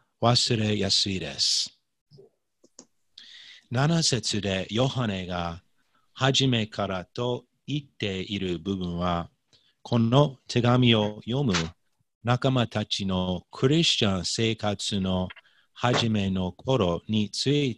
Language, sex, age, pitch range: Japanese, male, 40-59, 95-130 Hz